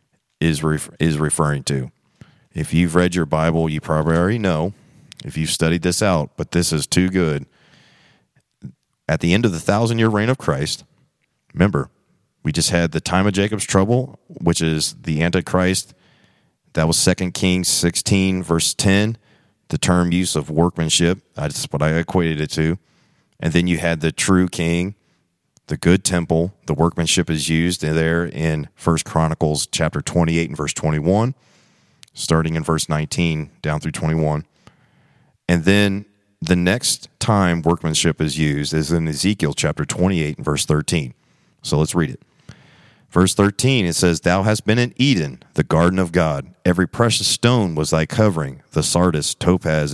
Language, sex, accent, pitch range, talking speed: English, male, American, 80-95 Hz, 160 wpm